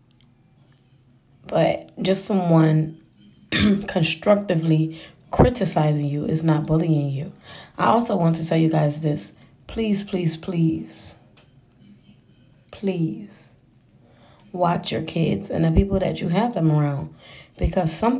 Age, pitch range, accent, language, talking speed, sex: 20-39, 150-185 Hz, American, English, 115 wpm, female